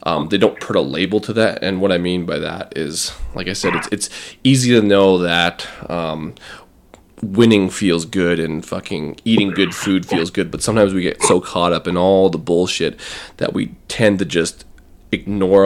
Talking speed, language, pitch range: 200 wpm, English, 85-100 Hz